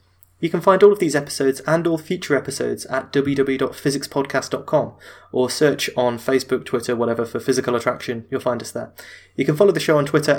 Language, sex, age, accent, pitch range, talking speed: English, male, 20-39, British, 125-150 Hz, 190 wpm